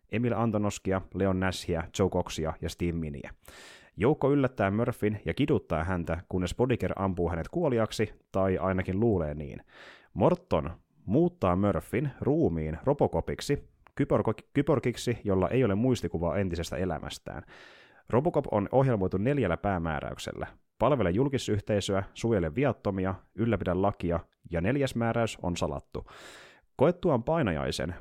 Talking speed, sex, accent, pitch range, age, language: 120 wpm, male, native, 85-115 Hz, 30-49, Finnish